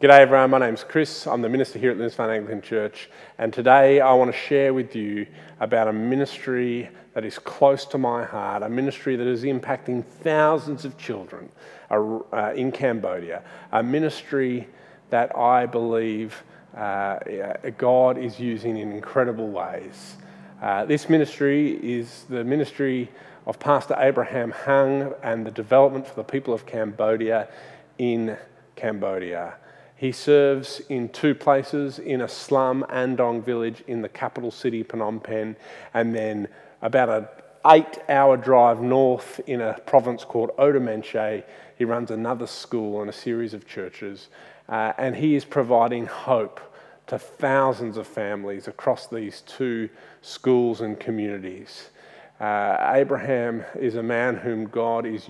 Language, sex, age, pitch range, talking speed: English, male, 30-49, 110-135 Hz, 140 wpm